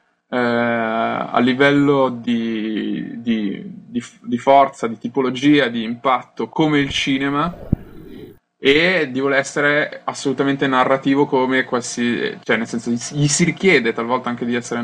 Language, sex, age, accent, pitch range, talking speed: Italian, male, 20-39, native, 110-135 Hz, 140 wpm